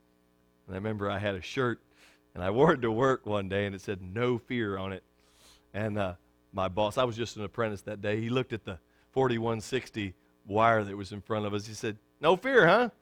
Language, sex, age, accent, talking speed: English, male, 40-59, American, 230 wpm